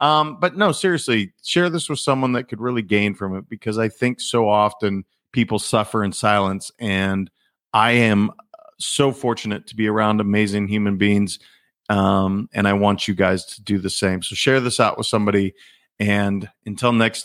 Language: English